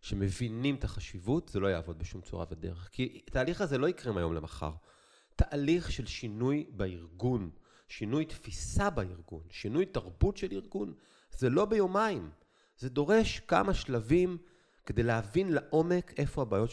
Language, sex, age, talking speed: Hebrew, male, 30-49, 140 wpm